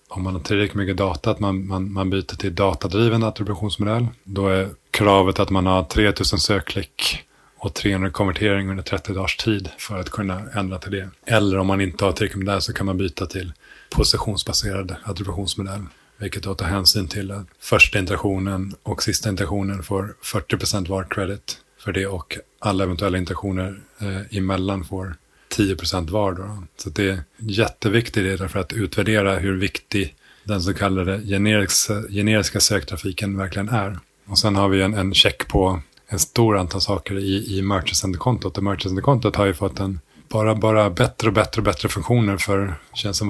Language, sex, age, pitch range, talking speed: Swedish, male, 30-49, 95-105 Hz, 170 wpm